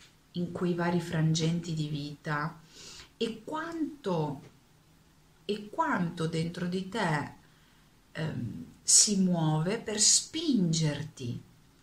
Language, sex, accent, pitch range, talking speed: Italian, female, native, 150-180 Hz, 85 wpm